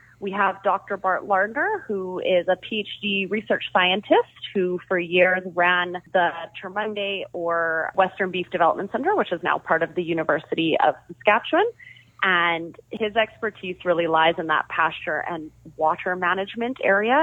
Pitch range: 165-200 Hz